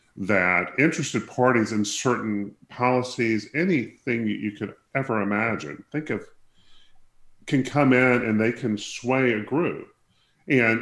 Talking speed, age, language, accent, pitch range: 130 wpm, 40-59, English, American, 95-115 Hz